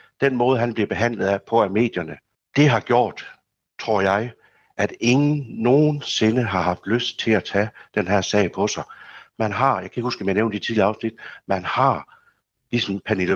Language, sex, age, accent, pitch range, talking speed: Danish, male, 60-79, native, 95-115 Hz, 195 wpm